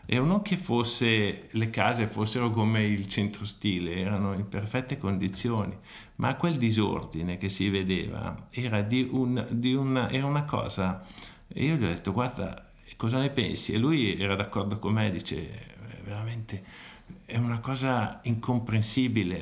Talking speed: 155 wpm